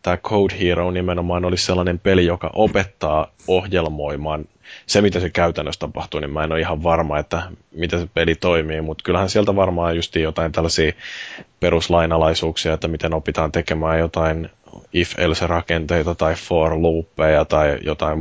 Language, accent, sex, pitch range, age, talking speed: Finnish, native, male, 80-95 Hz, 20-39, 150 wpm